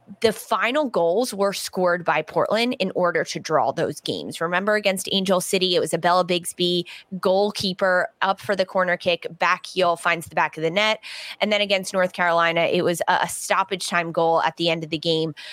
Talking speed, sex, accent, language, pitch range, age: 210 wpm, female, American, English, 170-210 Hz, 20-39